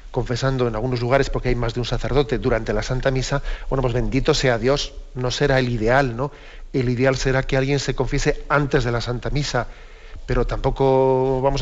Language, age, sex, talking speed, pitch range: Spanish, 40-59, male, 200 wpm, 125-140 Hz